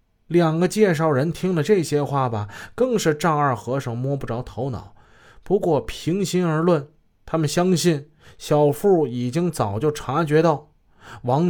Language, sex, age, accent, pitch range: Chinese, male, 20-39, native, 120-175 Hz